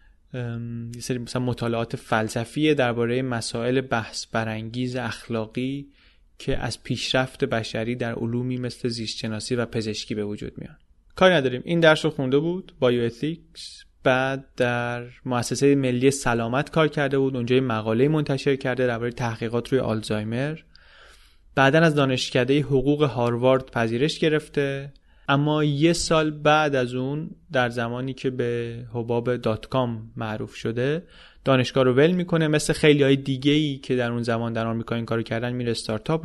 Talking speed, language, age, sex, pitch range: 140 wpm, Persian, 20-39, male, 120-150 Hz